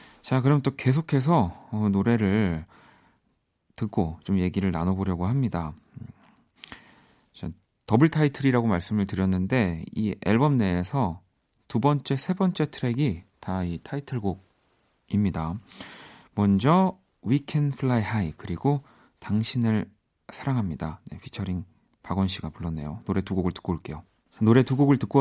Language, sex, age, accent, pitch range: Korean, male, 40-59, native, 95-130 Hz